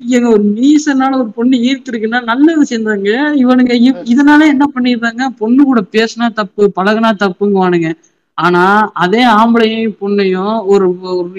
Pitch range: 180-235 Hz